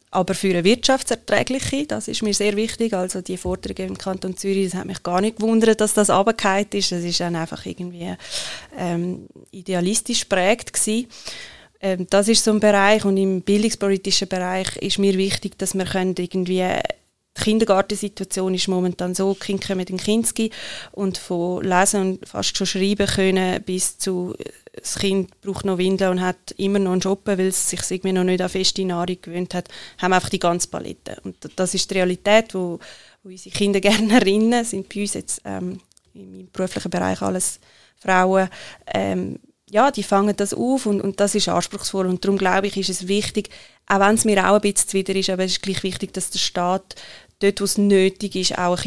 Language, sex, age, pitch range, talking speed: German, female, 20-39, 180-200 Hz, 195 wpm